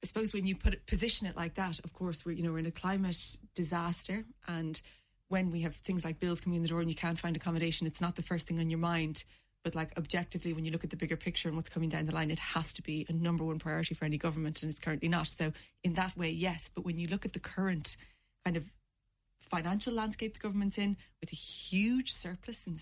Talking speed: 260 wpm